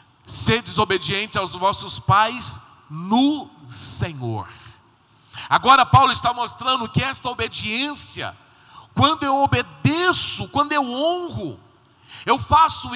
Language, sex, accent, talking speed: Portuguese, male, Brazilian, 100 wpm